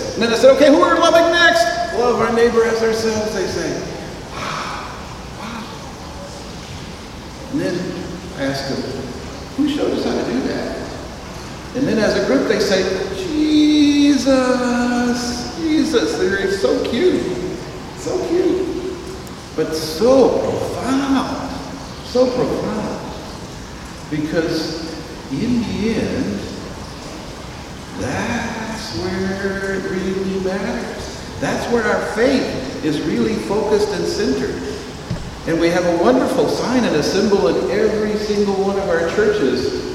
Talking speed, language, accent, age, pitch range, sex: 125 wpm, English, American, 50-69, 195-270 Hz, male